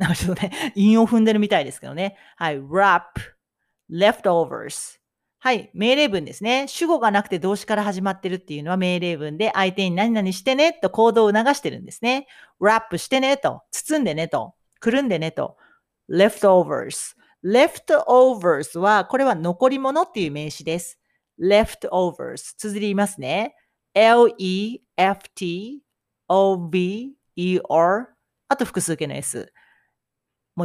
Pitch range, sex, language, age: 175-235 Hz, female, Japanese, 40-59